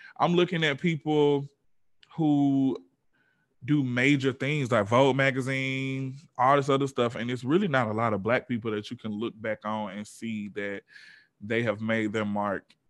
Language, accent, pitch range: English, American, 110-140 Hz